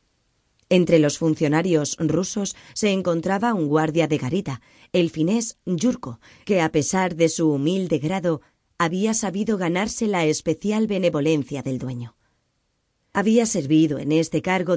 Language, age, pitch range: Spanish, 20-39, 155-190 Hz